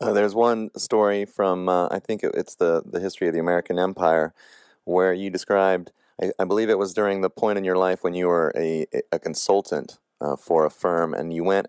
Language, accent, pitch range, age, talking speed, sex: English, American, 85-100 Hz, 30-49, 220 wpm, male